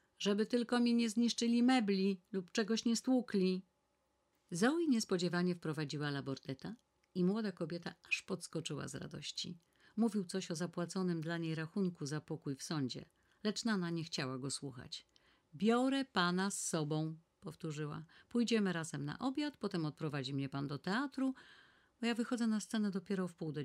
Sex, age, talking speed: female, 50-69, 155 wpm